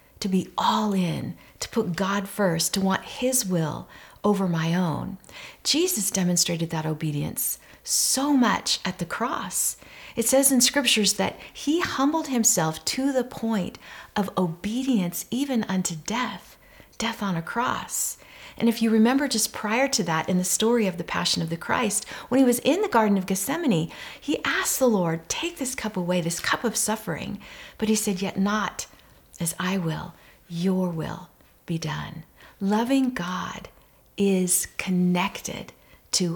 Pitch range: 175-240 Hz